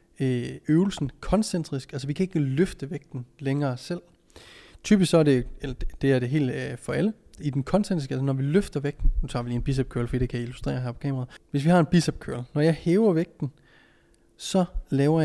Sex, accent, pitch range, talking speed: male, native, 130-160 Hz, 215 wpm